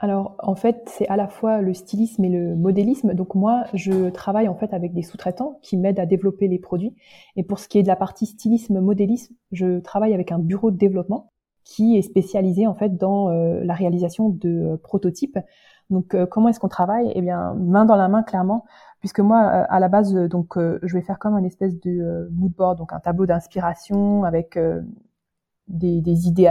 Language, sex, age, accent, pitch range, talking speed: French, female, 20-39, French, 175-205 Hz, 215 wpm